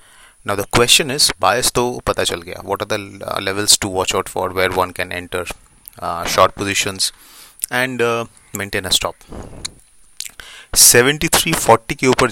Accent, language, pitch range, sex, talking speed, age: Indian, English, 95-120 Hz, male, 145 wpm, 30-49